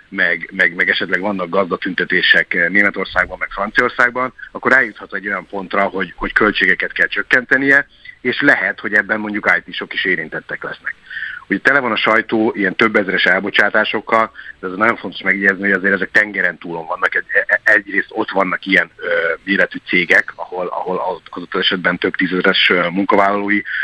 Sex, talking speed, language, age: male, 155 wpm, Hungarian, 50-69